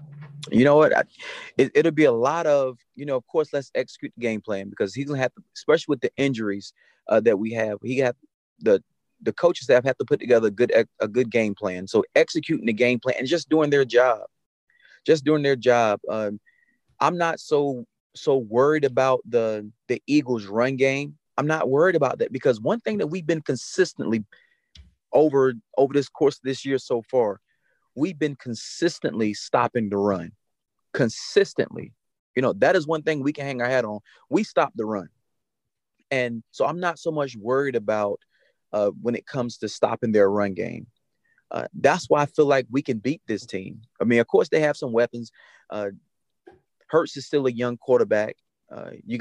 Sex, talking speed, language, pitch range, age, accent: male, 200 wpm, English, 115-150 Hz, 30-49, American